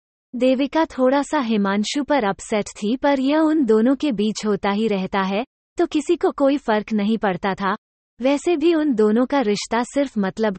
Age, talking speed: 30-49, 185 wpm